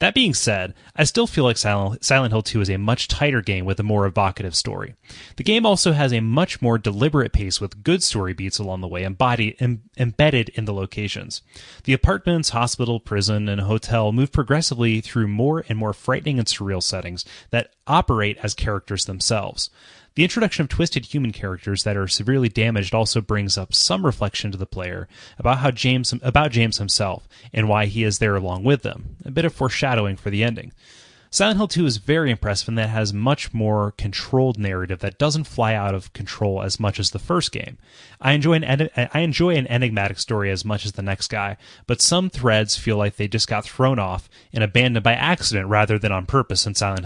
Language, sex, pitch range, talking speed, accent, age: English, male, 100-130 Hz, 205 wpm, American, 30-49